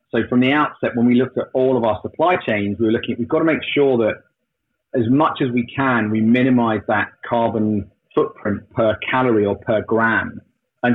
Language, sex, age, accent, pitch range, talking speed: Danish, male, 30-49, British, 115-135 Hz, 215 wpm